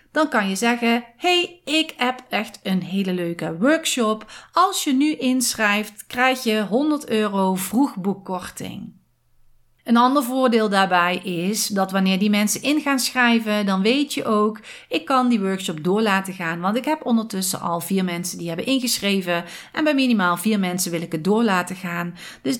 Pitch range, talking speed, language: 180-245 Hz, 175 wpm, Dutch